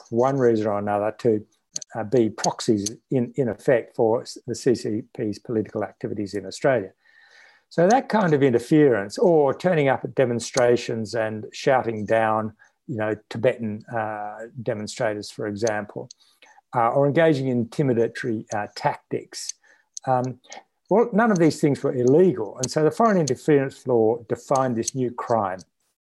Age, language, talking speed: 60-79, English, 145 wpm